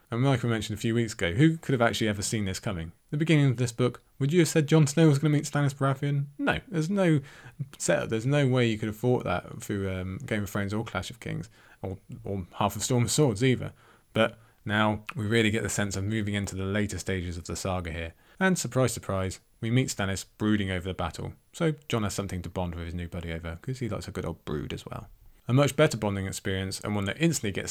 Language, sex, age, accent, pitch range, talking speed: English, male, 20-39, British, 95-125 Hz, 260 wpm